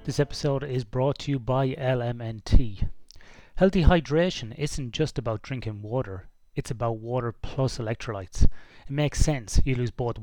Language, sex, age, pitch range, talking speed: English, male, 30-49, 110-140 Hz, 155 wpm